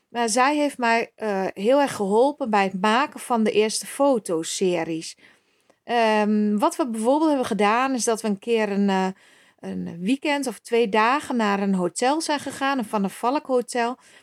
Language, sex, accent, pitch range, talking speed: Dutch, female, Dutch, 205-260 Hz, 175 wpm